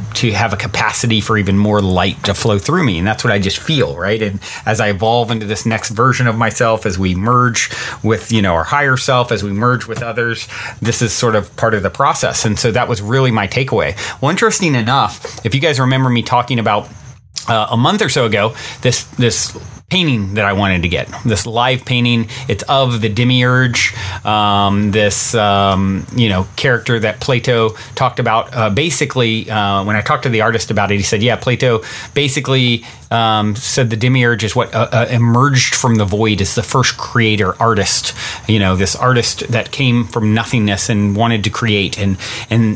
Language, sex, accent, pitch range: English, male, American, 105-125 Hz